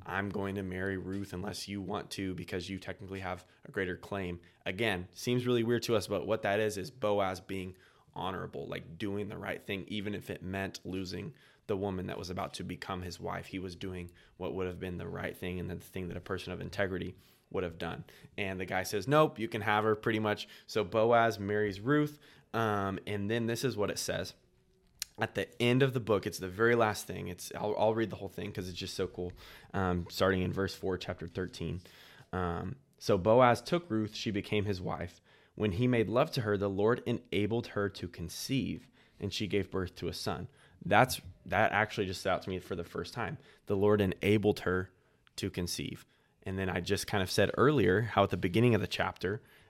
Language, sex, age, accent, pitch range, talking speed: English, male, 20-39, American, 90-105 Hz, 220 wpm